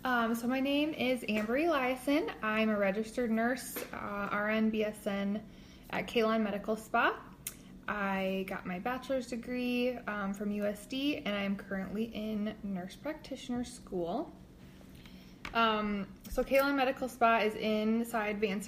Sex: female